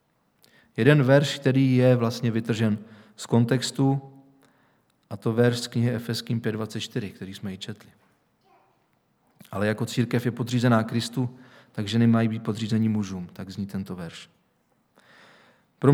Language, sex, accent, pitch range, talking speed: Czech, male, native, 115-135 Hz, 130 wpm